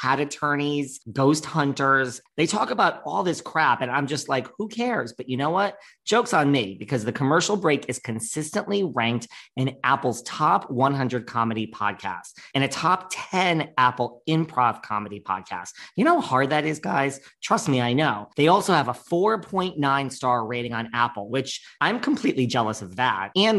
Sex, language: male, English